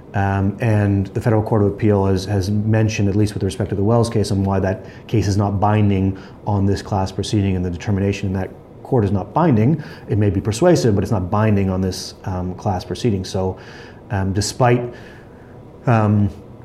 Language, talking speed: English, 200 wpm